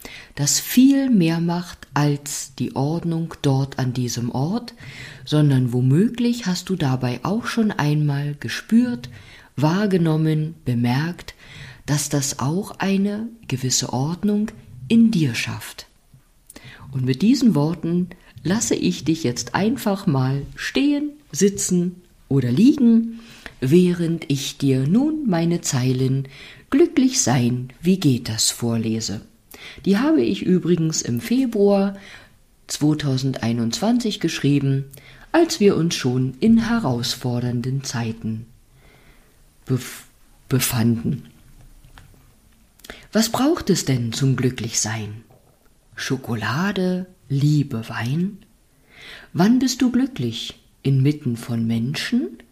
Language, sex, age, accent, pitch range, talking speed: German, female, 50-69, German, 125-195 Hz, 100 wpm